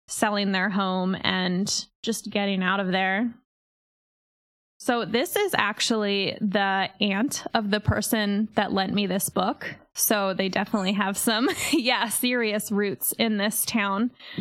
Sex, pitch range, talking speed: female, 200-230 Hz, 140 wpm